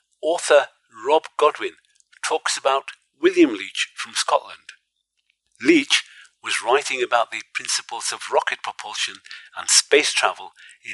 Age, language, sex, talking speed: 50-69, English, male, 120 wpm